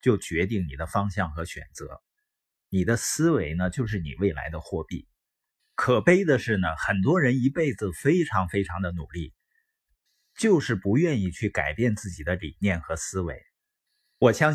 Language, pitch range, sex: Chinese, 95-145 Hz, male